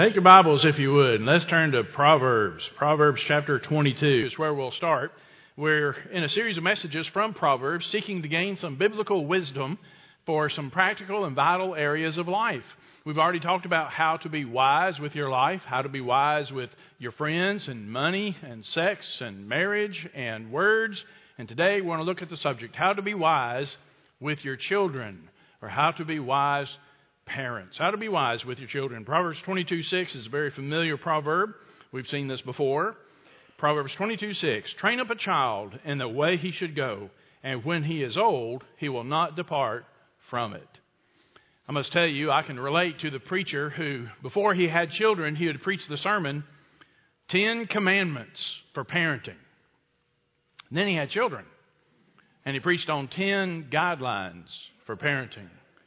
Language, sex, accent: English, male, American